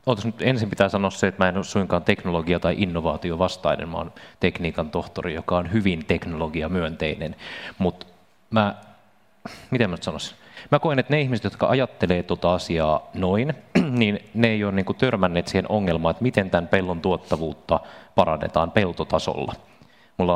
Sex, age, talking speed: male, 30-49, 140 wpm